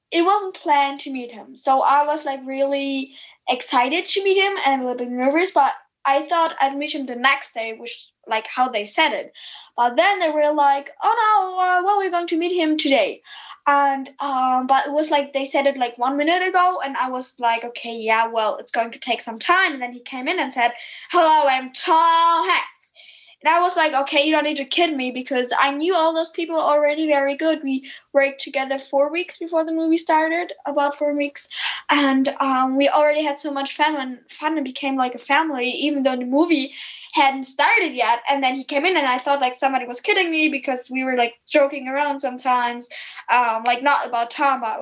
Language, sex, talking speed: English, female, 220 wpm